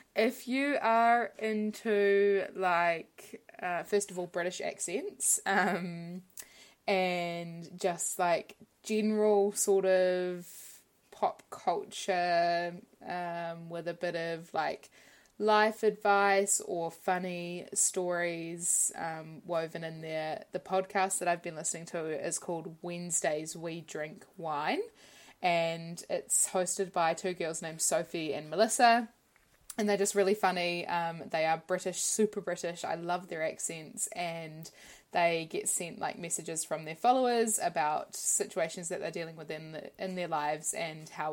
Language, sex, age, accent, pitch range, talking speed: English, female, 20-39, Australian, 165-200 Hz, 140 wpm